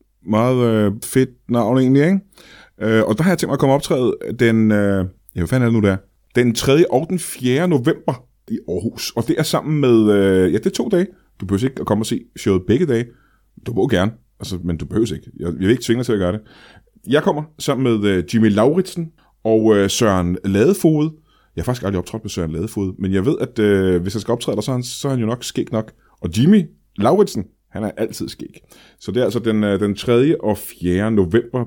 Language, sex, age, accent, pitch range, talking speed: Danish, male, 30-49, native, 105-135 Hz, 230 wpm